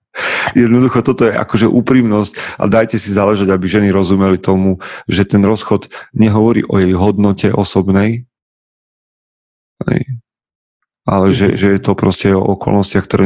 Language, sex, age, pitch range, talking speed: Slovak, male, 30-49, 95-115 Hz, 135 wpm